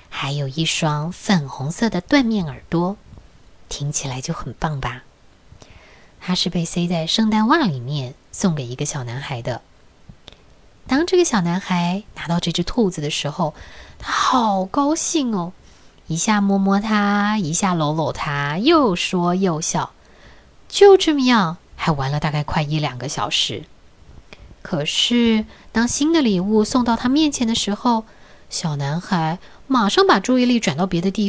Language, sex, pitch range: Chinese, female, 145-210 Hz